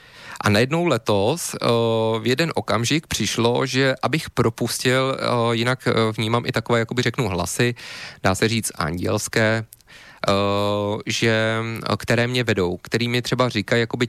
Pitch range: 105-130 Hz